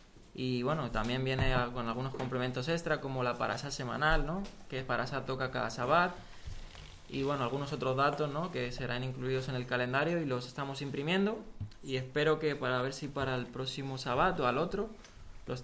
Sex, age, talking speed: male, 20-39, 185 wpm